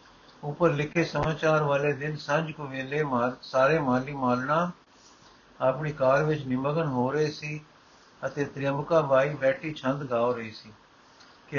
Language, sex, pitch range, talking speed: Punjabi, male, 130-155 Hz, 145 wpm